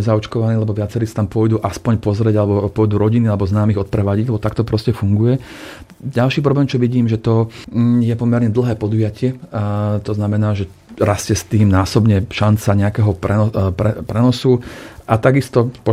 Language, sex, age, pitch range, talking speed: Slovak, male, 40-59, 105-120 Hz, 155 wpm